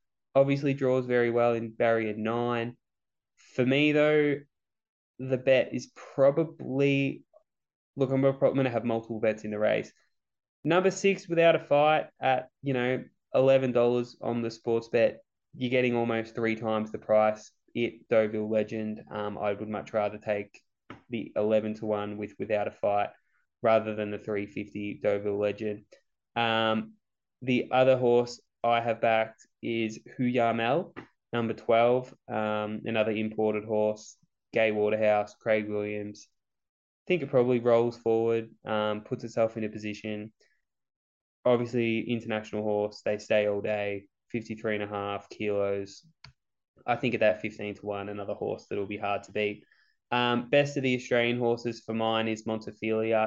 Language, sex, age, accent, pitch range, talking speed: English, male, 20-39, Australian, 105-120 Hz, 155 wpm